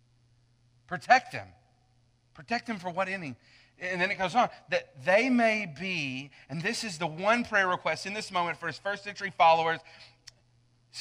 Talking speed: 175 wpm